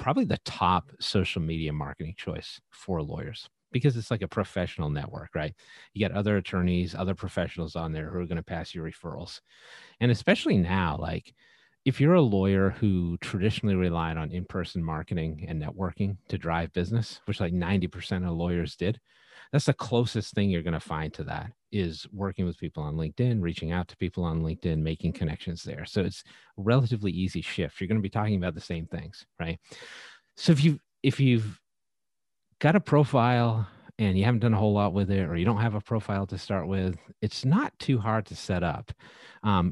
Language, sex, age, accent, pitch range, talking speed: English, male, 30-49, American, 85-110 Hz, 200 wpm